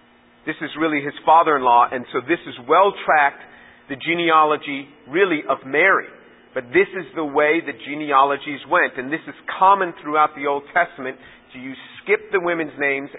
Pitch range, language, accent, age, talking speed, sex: 145-190 Hz, English, American, 40-59, 165 wpm, male